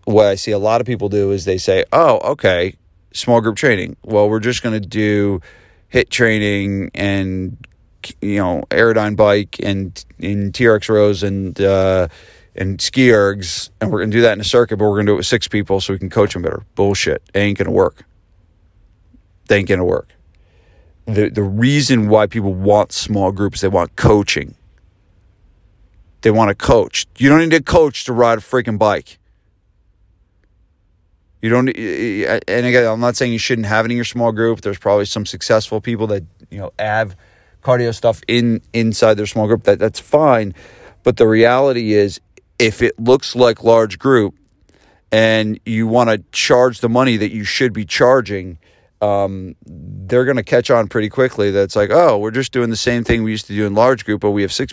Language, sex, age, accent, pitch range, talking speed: English, male, 40-59, American, 95-115 Hz, 195 wpm